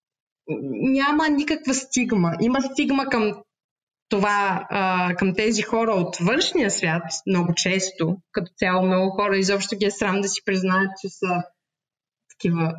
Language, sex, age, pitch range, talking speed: Bulgarian, female, 20-39, 185-245 Hz, 135 wpm